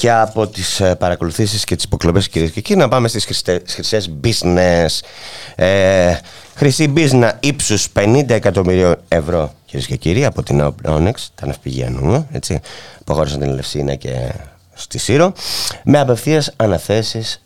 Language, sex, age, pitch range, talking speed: Greek, male, 30-49, 85-115 Hz, 140 wpm